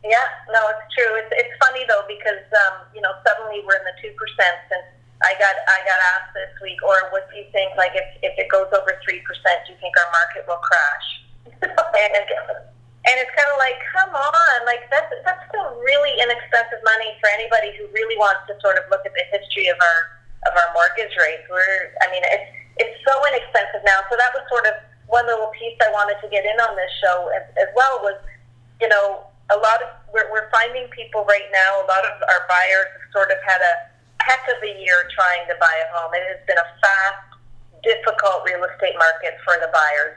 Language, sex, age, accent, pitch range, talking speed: English, female, 30-49, American, 175-225 Hz, 220 wpm